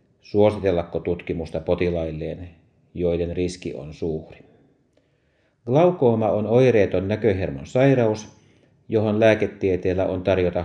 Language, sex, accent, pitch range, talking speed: Finnish, male, native, 85-115 Hz, 90 wpm